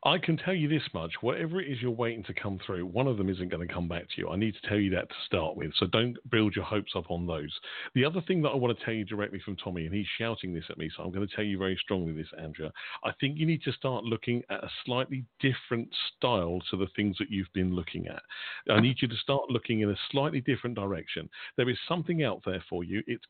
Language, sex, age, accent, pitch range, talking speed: English, male, 40-59, British, 100-135 Hz, 280 wpm